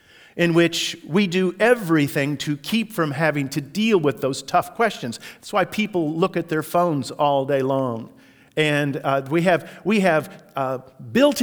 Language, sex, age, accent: English, male, 50-69, American